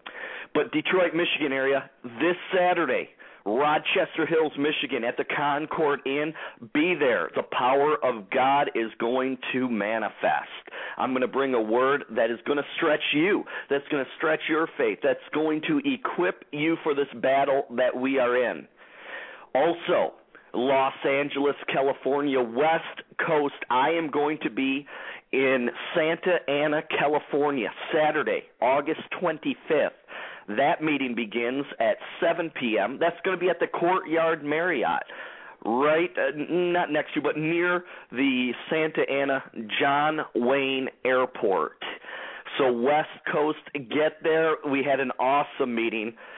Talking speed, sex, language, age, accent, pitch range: 140 wpm, male, English, 50-69, American, 130-165 Hz